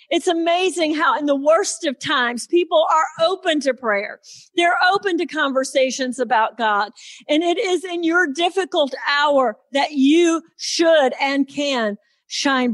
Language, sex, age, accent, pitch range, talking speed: English, female, 50-69, American, 255-325 Hz, 150 wpm